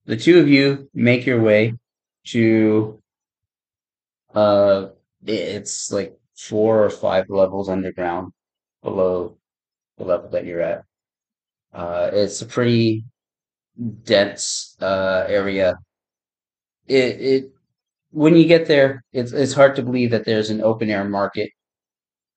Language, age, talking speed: English, 30-49, 125 wpm